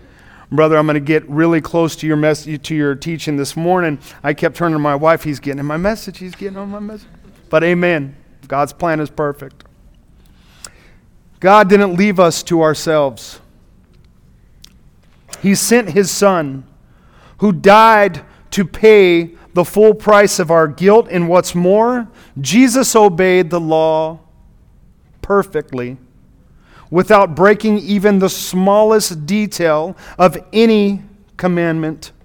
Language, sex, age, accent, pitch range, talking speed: English, male, 40-59, American, 155-205 Hz, 140 wpm